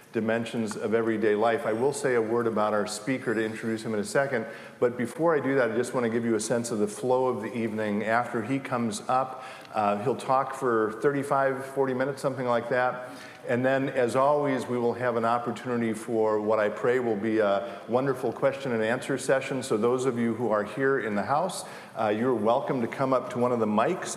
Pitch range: 105-130 Hz